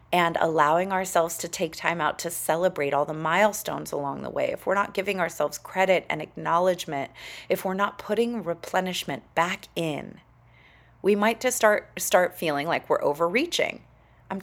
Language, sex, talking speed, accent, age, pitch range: English, female, 165 wpm, American, 30-49, 170-215 Hz